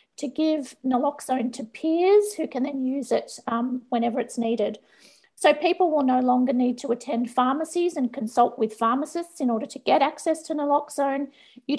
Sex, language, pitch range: female, English, 235-305 Hz